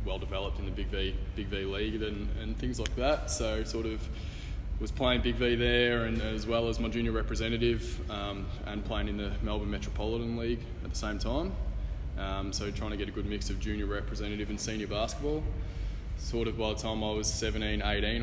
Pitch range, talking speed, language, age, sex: 95-110 Hz, 205 wpm, English, 20-39, male